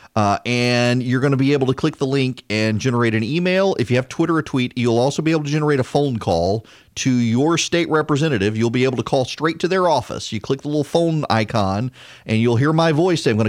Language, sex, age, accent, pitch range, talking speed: English, male, 40-59, American, 105-135 Hz, 255 wpm